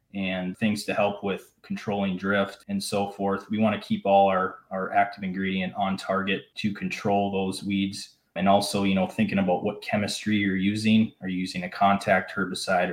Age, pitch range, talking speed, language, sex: 20-39, 95-110 Hz, 190 wpm, English, male